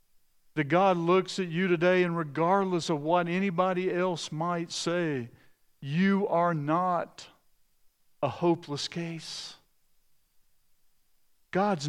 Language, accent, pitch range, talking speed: English, American, 120-170 Hz, 105 wpm